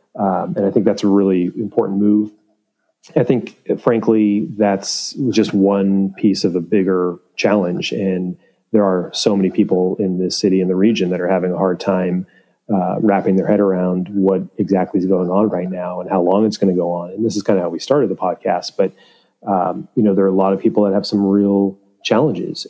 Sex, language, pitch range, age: male, English, 90-100 Hz, 30-49